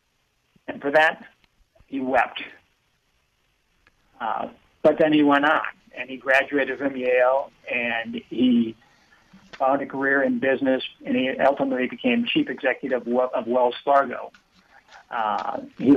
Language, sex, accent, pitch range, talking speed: English, male, American, 125-150 Hz, 130 wpm